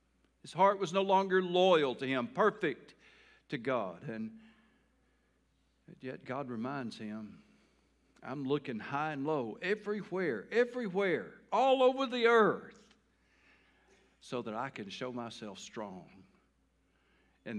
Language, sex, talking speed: English, male, 120 wpm